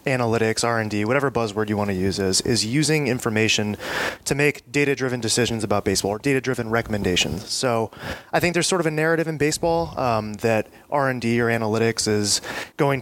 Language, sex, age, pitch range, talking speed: English, male, 20-39, 110-135 Hz, 170 wpm